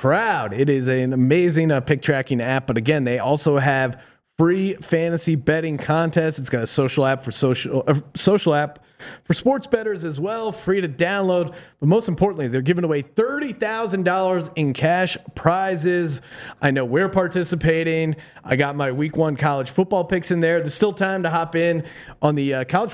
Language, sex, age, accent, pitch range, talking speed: English, male, 30-49, American, 145-185 Hz, 190 wpm